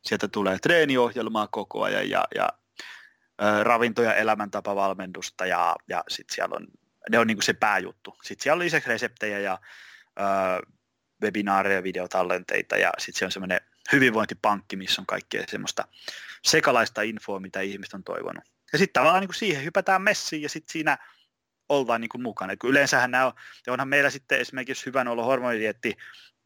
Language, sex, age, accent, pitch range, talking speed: Finnish, male, 20-39, native, 100-130 Hz, 155 wpm